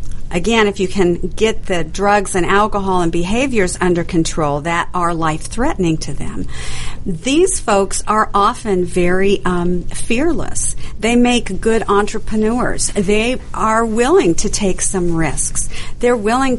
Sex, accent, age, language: female, American, 50-69, English